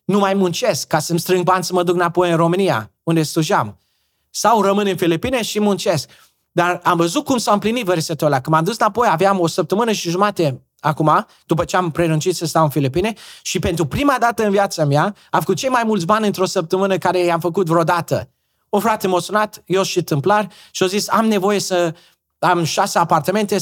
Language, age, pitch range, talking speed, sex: Romanian, 20-39, 165-200 Hz, 210 wpm, male